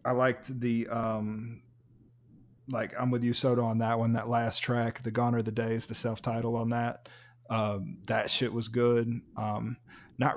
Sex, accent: male, American